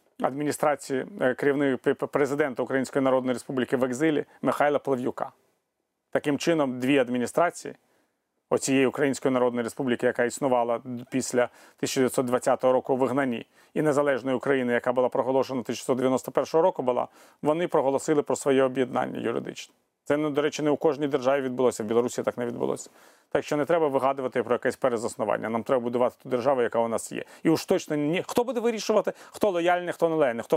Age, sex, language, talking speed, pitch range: 30-49, male, Ukrainian, 160 wpm, 130-155 Hz